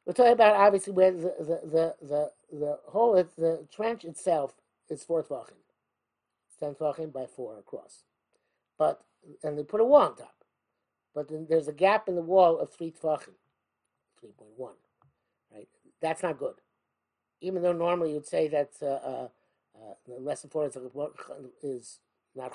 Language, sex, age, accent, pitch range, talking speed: English, male, 50-69, American, 150-210 Hz, 175 wpm